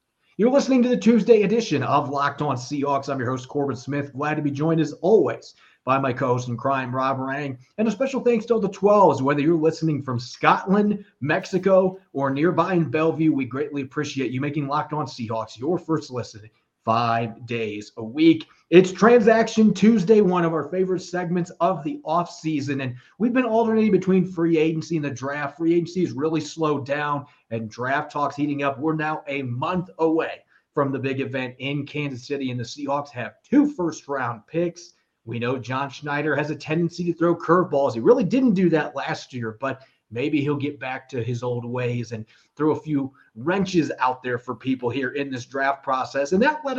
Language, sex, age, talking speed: English, male, 30-49, 200 wpm